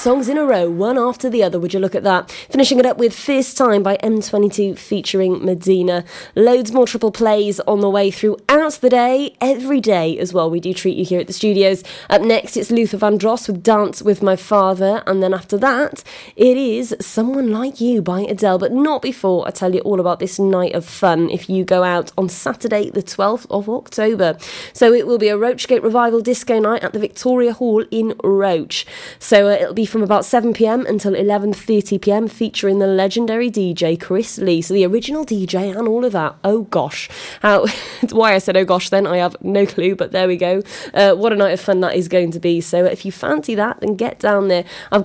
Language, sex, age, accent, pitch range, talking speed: English, female, 20-39, British, 185-230 Hz, 220 wpm